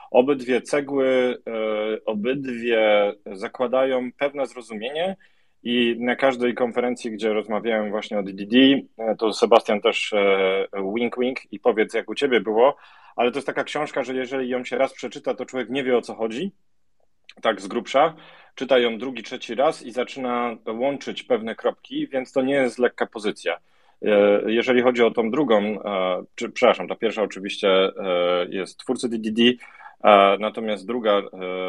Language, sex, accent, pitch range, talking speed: Polish, male, native, 105-125 Hz, 145 wpm